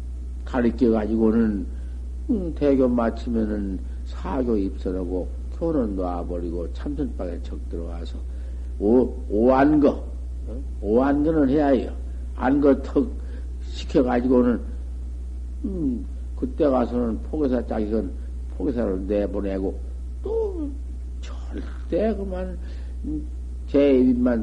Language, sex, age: Korean, male, 50-69